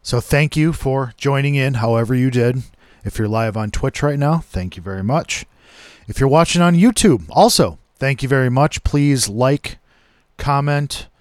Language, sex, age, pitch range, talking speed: English, male, 40-59, 110-145 Hz, 175 wpm